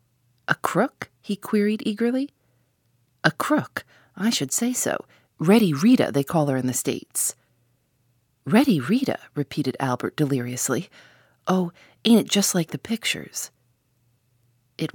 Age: 40-59